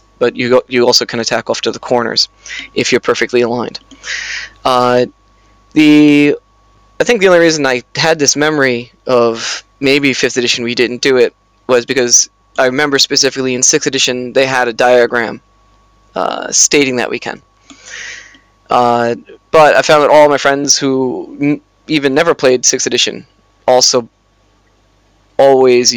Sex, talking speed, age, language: male, 155 wpm, 20-39, English